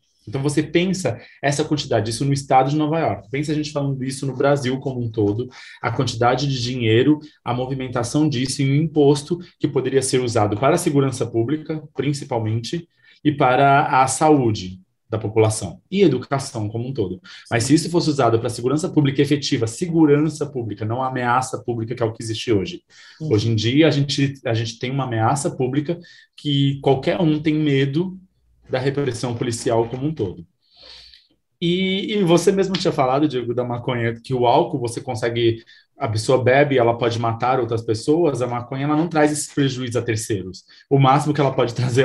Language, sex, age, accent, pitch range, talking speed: Portuguese, male, 20-39, Brazilian, 120-150 Hz, 185 wpm